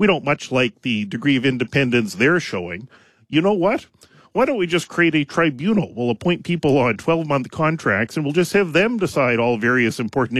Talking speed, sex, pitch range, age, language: 200 wpm, male, 115-145 Hz, 40-59, English